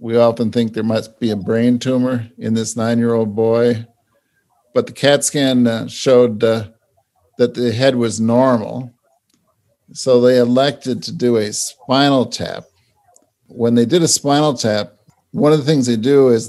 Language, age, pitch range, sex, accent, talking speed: English, 50-69, 115-130 Hz, male, American, 160 wpm